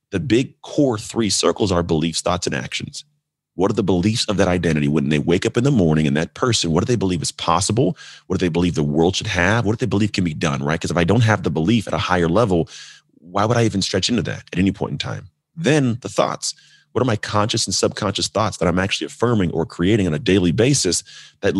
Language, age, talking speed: English, 30-49, 260 wpm